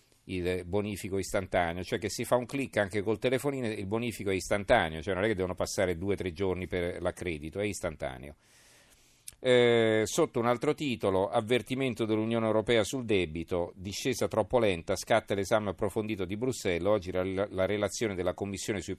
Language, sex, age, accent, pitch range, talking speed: Italian, male, 40-59, native, 95-120 Hz, 175 wpm